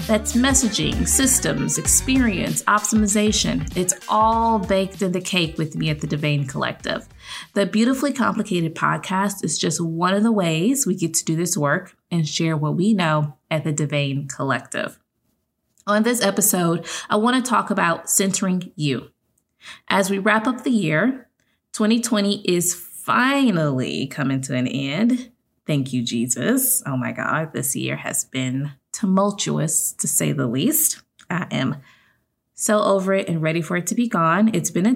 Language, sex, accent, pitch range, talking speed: English, female, American, 150-215 Hz, 165 wpm